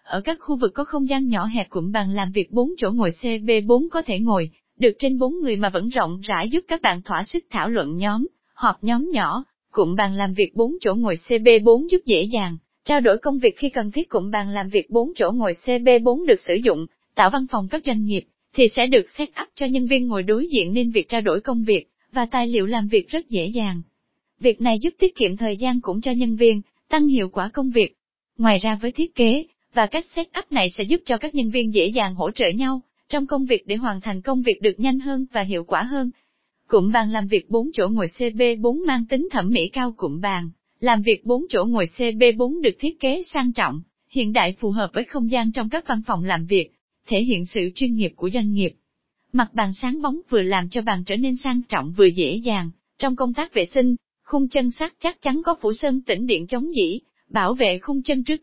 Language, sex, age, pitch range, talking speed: Vietnamese, female, 20-39, 210-275 Hz, 245 wpm